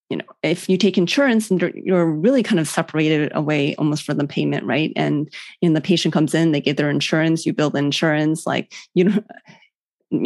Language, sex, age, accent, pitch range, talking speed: English, female, 20-39, American, 160-190 Hz, 210 wpm